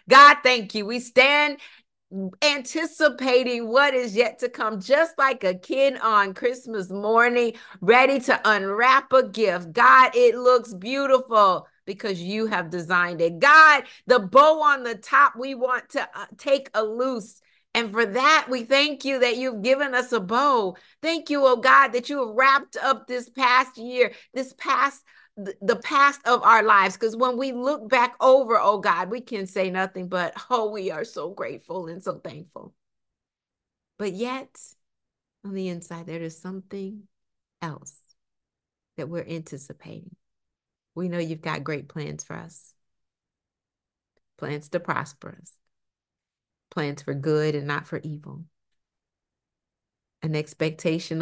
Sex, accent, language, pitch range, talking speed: female, American, English, 170-260 Hz, 150 wpm